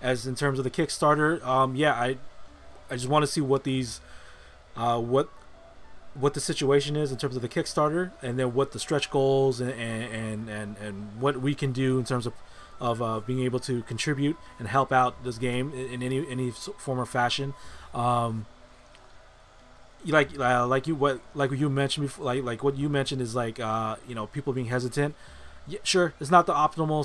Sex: male